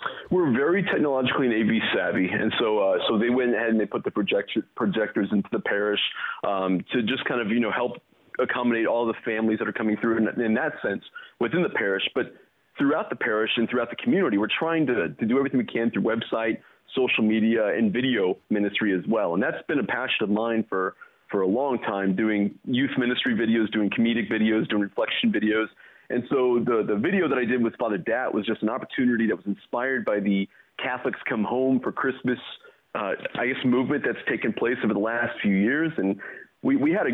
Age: 30-49